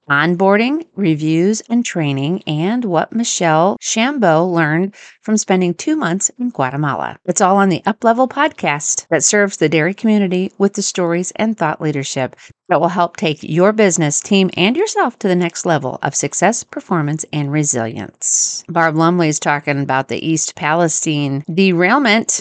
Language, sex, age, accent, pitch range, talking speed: English, female, 40-59, American, 150-195 Hz, 160 wpm